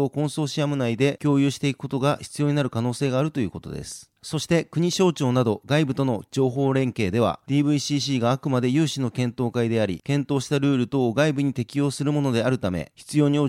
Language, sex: Japanese, male